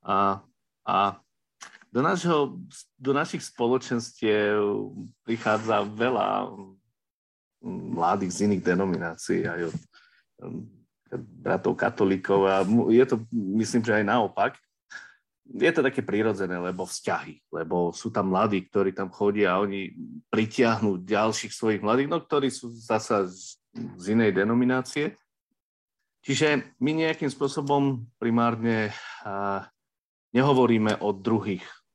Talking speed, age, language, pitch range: 115 wpm, 40-59, Slovak, 95-125 Hz